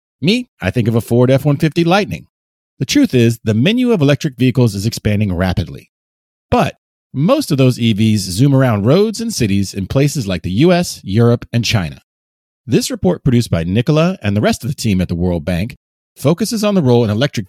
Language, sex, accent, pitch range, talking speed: English, male, American, 100-150 Hz, 200 wpm